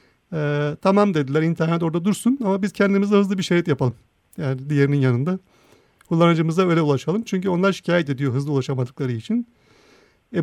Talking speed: 155 wpm